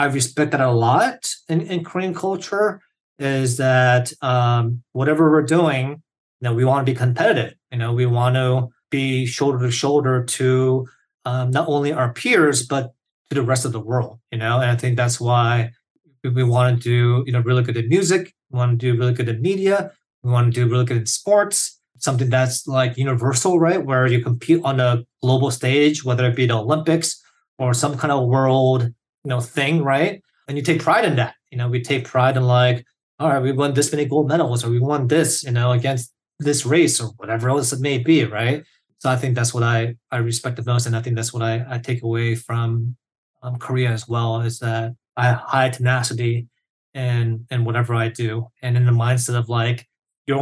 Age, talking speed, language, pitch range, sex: 30-49, 215 wpm, English, 120-145 Hz, male